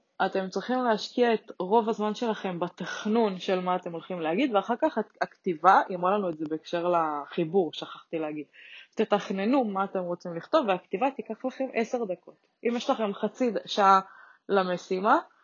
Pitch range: 185-220 Hz